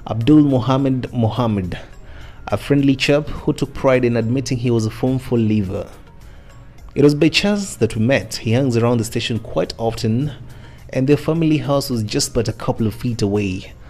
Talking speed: 180 wpm